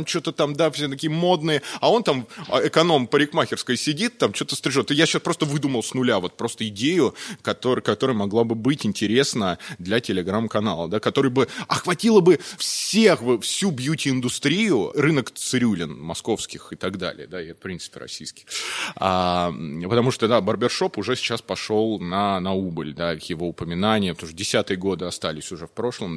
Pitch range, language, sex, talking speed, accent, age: 105-150 Hz, Russian, male, 170 wpm, native, 20-39